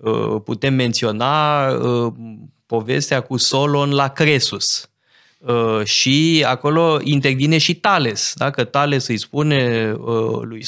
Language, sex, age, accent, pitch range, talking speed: Romanian, male, 20-39, native, 115-150 Hz, 95 wpm